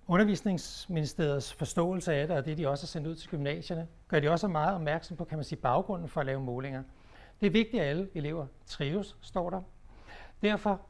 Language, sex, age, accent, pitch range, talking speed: English, male, 60-79, Danish, 135-175 Hz, 210 wpm